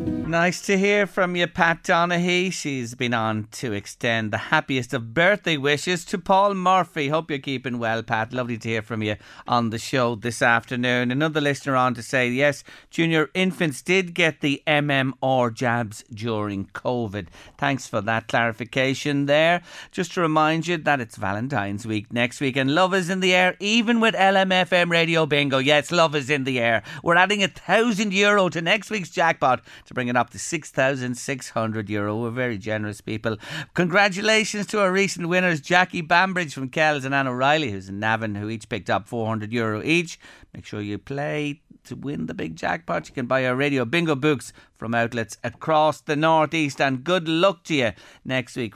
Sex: male